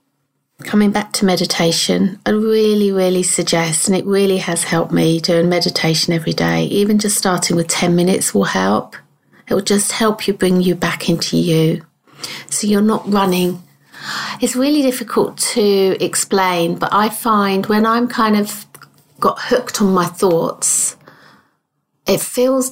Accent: British